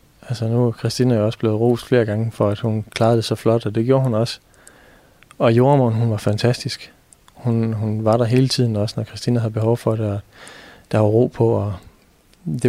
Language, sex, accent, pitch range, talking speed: Danish, male, native, 105-120 Hz, 225 wpm